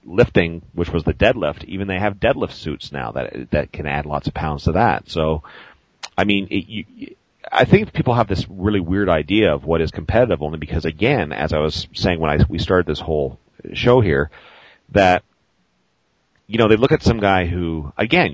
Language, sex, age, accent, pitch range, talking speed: English, male, 40-59, American, 80-105 Hz, 205 wpm